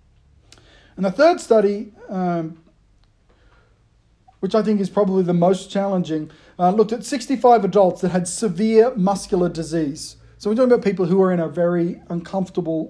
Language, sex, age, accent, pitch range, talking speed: English, male, 40-59, Australian, 165-220 Hz, 160 wpm